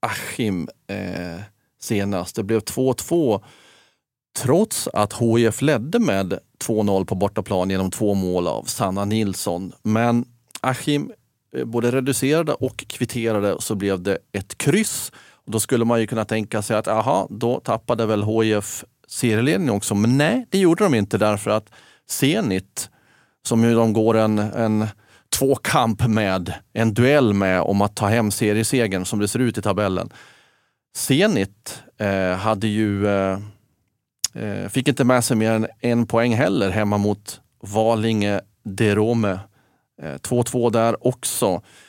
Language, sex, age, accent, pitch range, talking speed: Swedish, male, 30-49, native, 105-125 Hz, 150 wpm